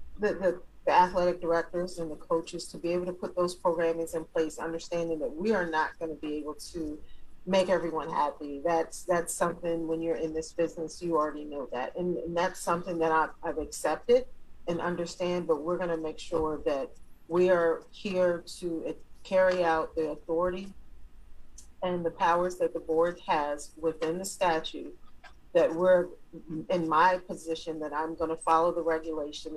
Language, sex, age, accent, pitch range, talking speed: English, female, 40-59, American, 155-180 Hz, 180 wpm